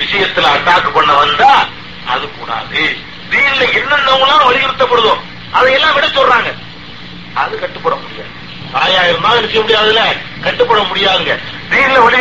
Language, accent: Tamil, native